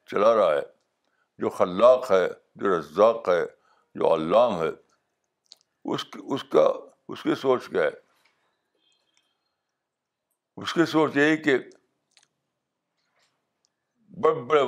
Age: 60-79